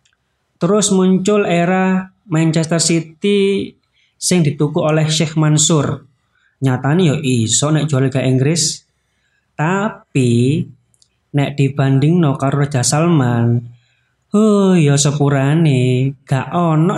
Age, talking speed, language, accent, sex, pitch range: 20-39, 100 wpm, Indonesian, native, male, 130-165 Hz